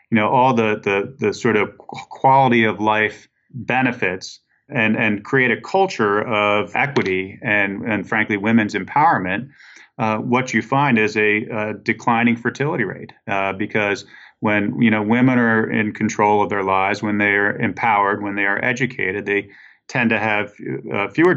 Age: 40-59